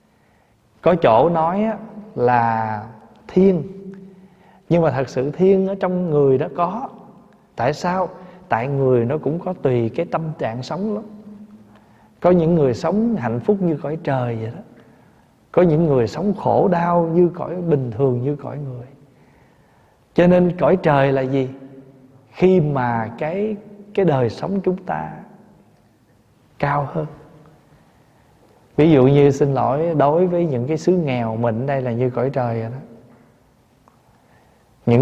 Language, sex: Vietnamese, male